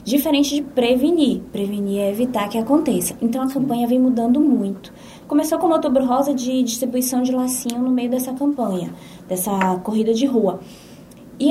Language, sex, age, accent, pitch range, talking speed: Portuguese, female, 20-39, Brazilian, 205-270 Hz, 165 wpm